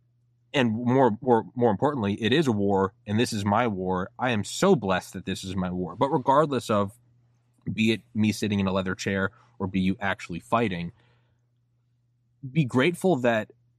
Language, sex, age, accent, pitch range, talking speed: English, male, 20-39, American, 120-165 Hz, 185 wpm